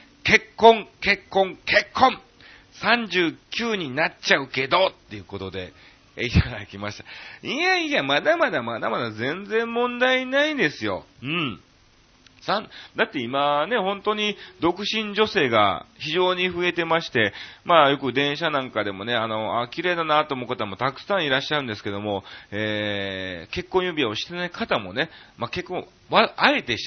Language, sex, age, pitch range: Japanese, male, 40-59, 110-180 Hz